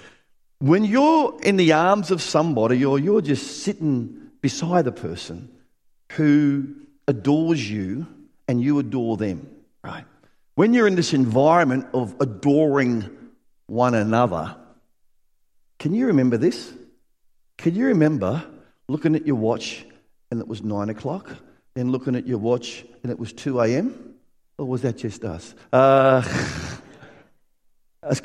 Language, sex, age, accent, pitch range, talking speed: English, male, 50-69, Australian, 115-165 Hz, 135 wpm